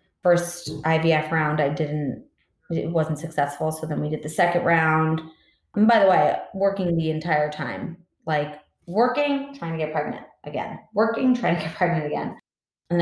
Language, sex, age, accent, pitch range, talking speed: English, female, 20-39, American, 155-180 Hz, 170 wpm